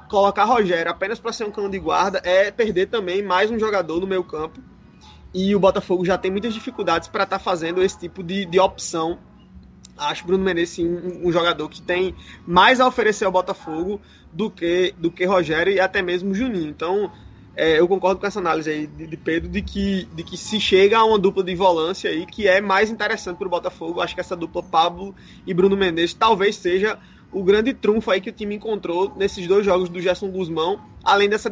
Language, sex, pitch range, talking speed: Portuguese, male, 175-210 Hz, 215 wpm